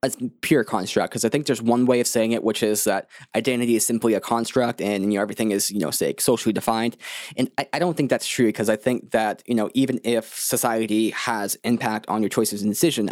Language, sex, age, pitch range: English, male, 10-29, 110-130 Hz